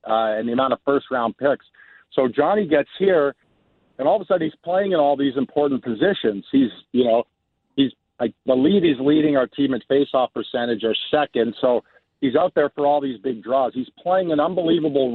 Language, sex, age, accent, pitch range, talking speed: English, male, 50-69, American, 120-150 Hz, 200 wpm